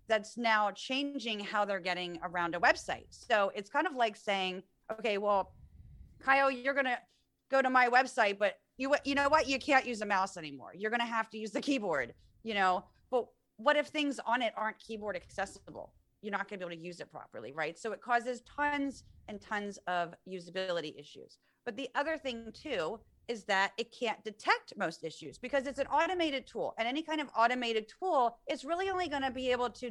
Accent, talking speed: American, 205 wpm